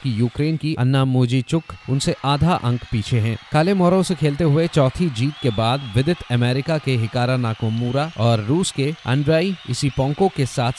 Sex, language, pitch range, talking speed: male, Hindi, 115-150 Hz, 165 wpm